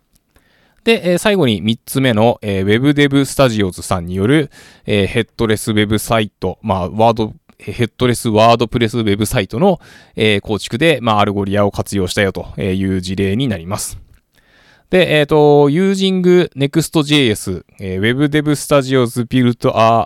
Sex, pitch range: male, 100-140 Hz